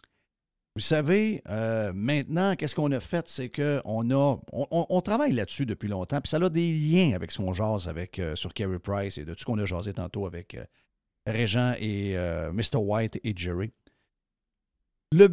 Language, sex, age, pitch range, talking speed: French, male, 50-69, 105-150 Hz, 195 wpm